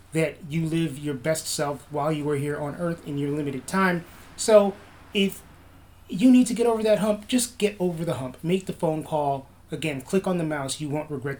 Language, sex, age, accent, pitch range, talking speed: English, male, 30-49, American, 140-175 Hz, 220 wpm